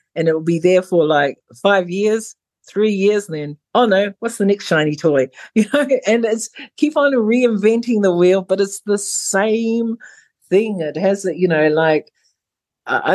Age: 50-69